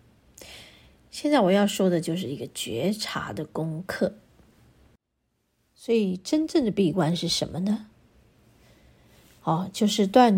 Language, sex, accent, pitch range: Chinese, female, native, 175-220 Hz